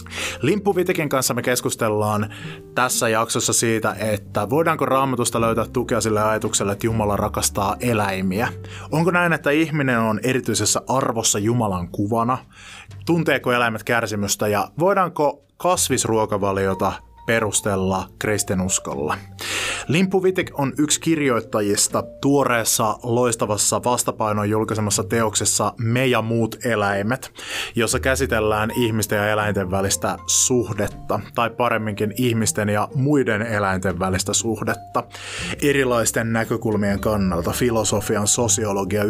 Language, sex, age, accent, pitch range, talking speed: Finnish, male, 20-39, native, 100-125 Hz, 105 wpm